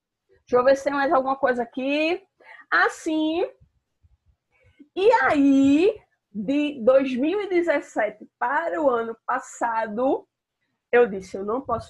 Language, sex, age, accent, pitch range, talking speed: Portuguese, female, 20-39, Brazilian, 205-275 Hz, 120 wpm